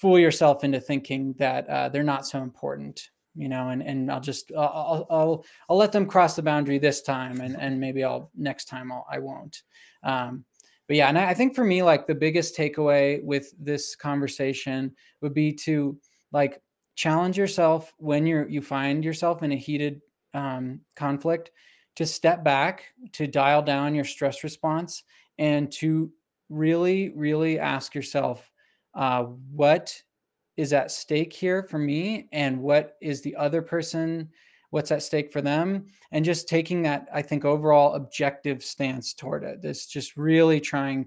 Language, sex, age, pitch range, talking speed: English, male, 20-39, 135-160 Hz, 170 wpm